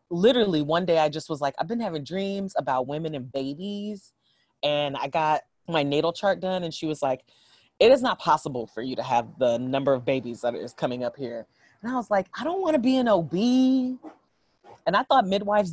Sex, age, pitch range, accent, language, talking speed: female, 30-49, 140-195 Hz, American, English, 220 wpm